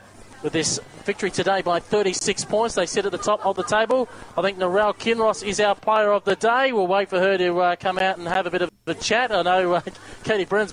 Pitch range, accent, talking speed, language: 170-205 Hz, Australian, 250 wpm, English